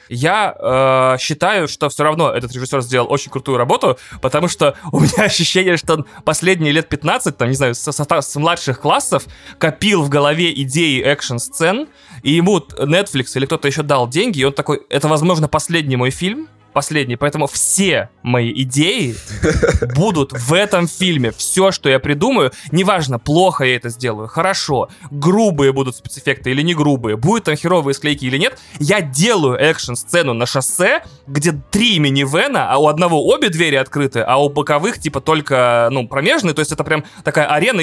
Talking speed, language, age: 175 wpm, Russian, 20-39